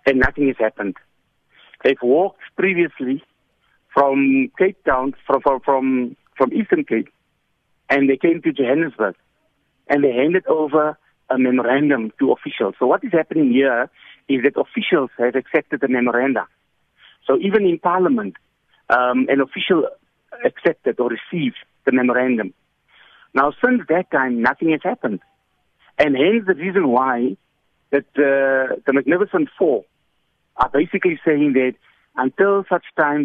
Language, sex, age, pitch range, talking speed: English, male, 60-79, 130-170 Hz, 135 wpm